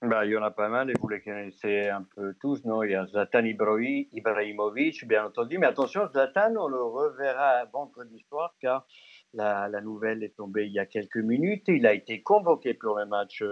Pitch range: 95-120 Hz